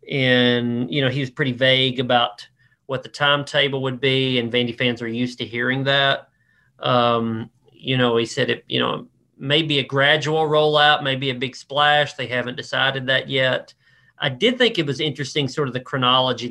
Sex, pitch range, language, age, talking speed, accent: male, 125-155 Hz, English, 40-59, 190 wpm, American